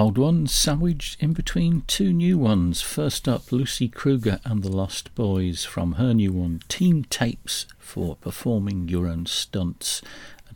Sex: male